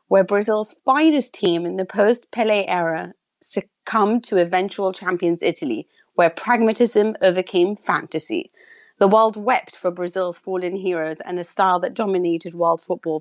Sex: female